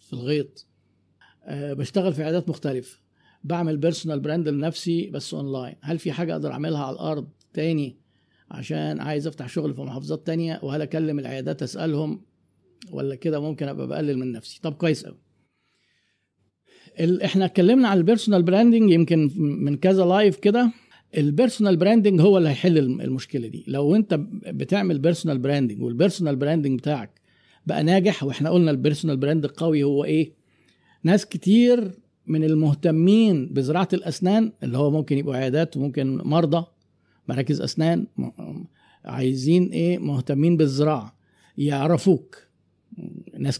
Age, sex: 50-69, male